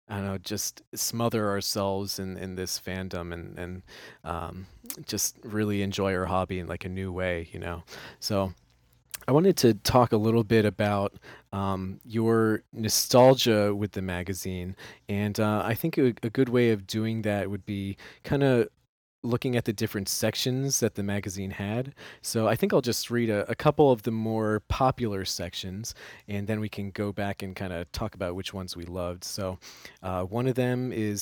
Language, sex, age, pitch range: English, male, 30-49, 95-120 Hz